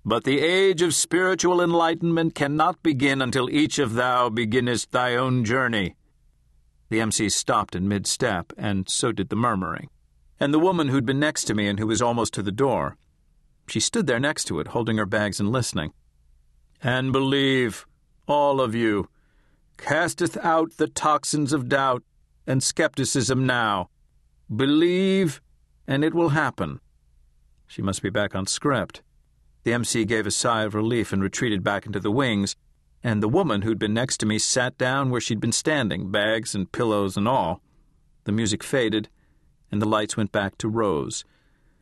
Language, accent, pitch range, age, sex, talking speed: English, American, 100-140 Hz, 50-69, male, 170 wpm